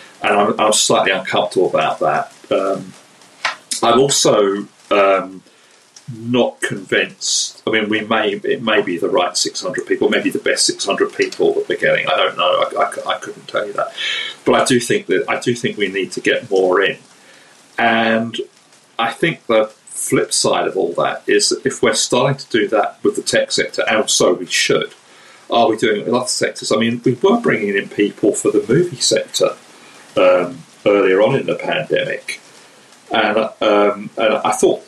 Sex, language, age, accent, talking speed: male, English, 40-59, British, 190 wpm